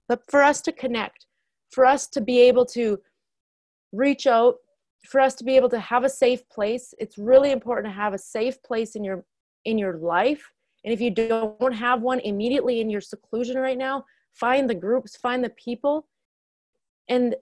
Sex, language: female, English